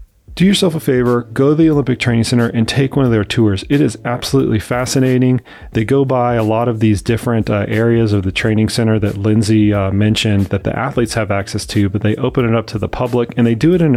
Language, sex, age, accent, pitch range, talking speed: English, male, 30-49, American, 105-125 Hz, 245 wpm